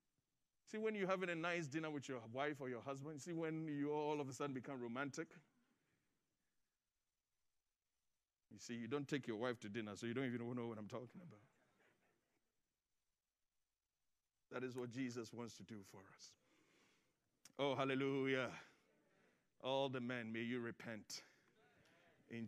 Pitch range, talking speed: 135-220 Hz, 155 wpm